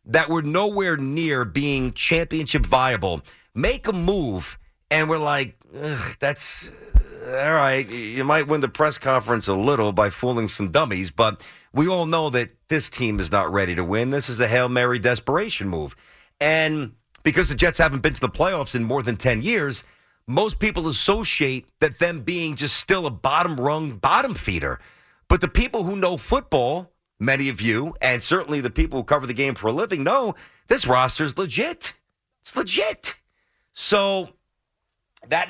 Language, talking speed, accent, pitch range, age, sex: English, 175 wpm, American, 125-165 Hz, 50-69, male